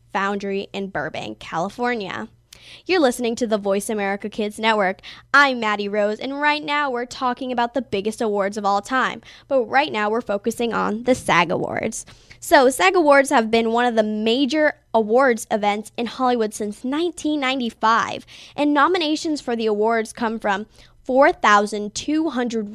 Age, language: 10-29, English